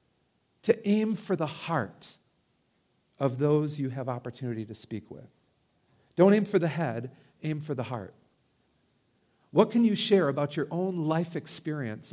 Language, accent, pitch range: English, American, 130-165 Hz